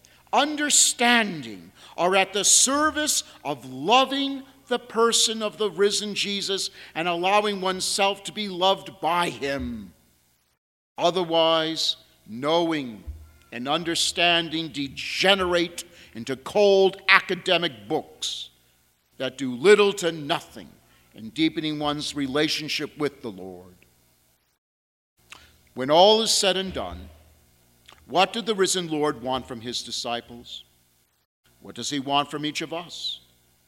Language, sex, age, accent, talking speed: English, male, 50-69, American, 115 wpm